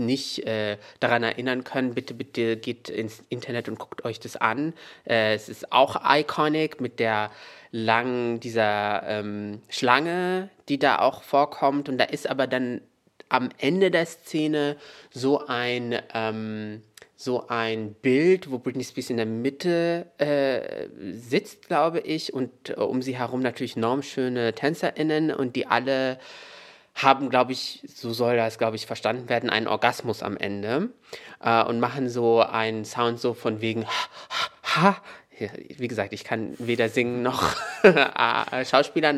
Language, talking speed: German, 150 wpm